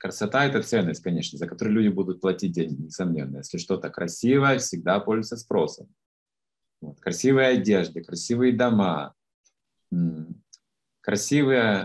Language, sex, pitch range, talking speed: Russian, male, 95-135 Hz, 120 wpm